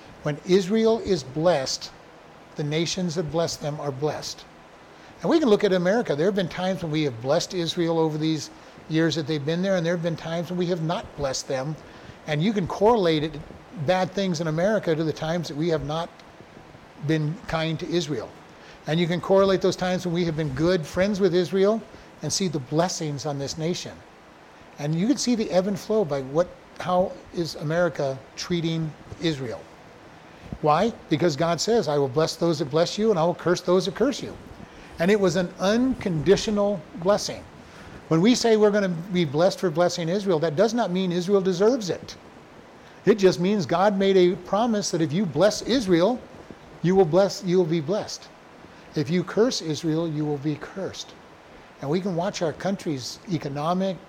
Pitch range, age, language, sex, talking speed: 155-190 Hz, 60-79, English, male, 195 wpm